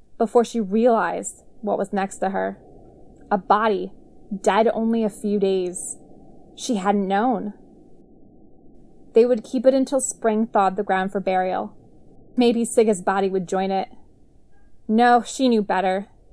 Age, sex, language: 20-39, female, English